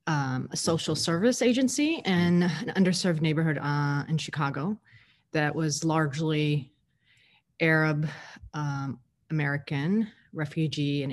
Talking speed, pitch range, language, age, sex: 110 wpm, 140-165 Hz, English, 30-49, female